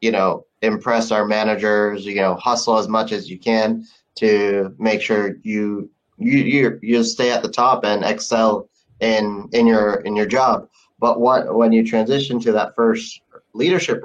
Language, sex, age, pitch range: English, male, 20-39, 100-115 Hz